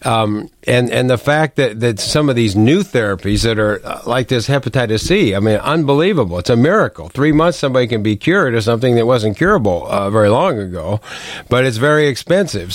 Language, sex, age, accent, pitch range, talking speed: English, male, 50-69, American, 105-130 Hz, 205 wpm